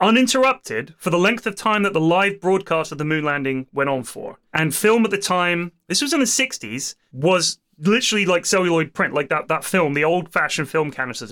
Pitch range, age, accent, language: 175-245 Hz, 30-49, British, English